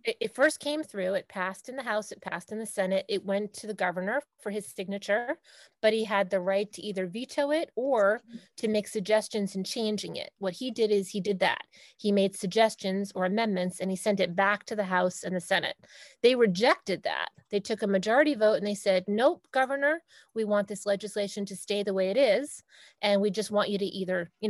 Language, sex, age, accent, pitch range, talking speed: English, female, 30-49, American, 195-225 Hz, 225 wpm